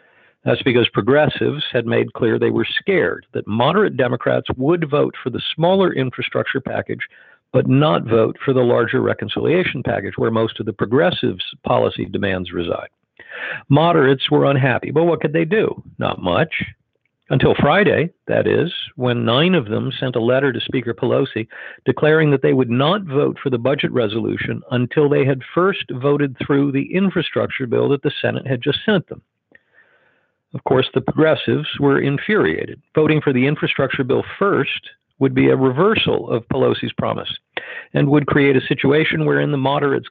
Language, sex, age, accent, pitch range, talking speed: English, male, 50-69, American, 125-150 Hz, 170 wpm